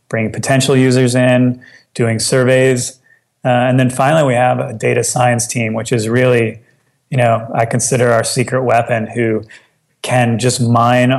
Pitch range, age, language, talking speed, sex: 115-130 Hz, 30-49, English, 160 wpm, male